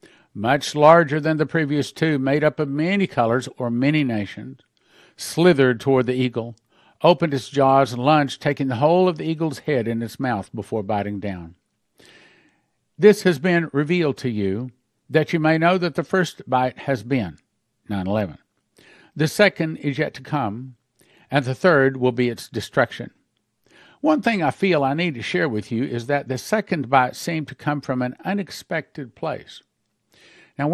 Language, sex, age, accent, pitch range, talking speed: English, male, 50-69, American, 115-165 Hz, 175 wpm